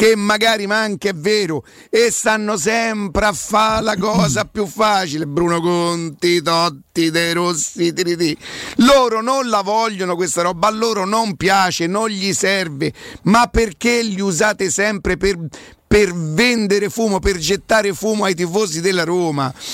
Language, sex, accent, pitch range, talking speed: Italian, male, native, 180-225 Hz, 150 wpm